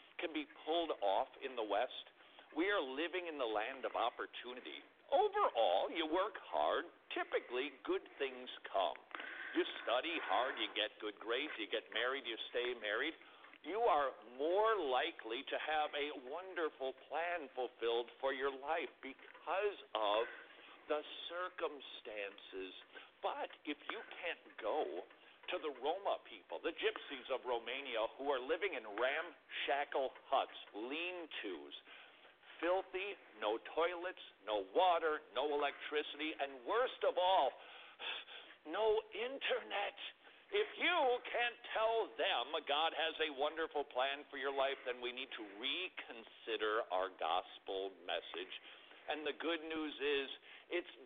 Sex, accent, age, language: male, American, 50-69, English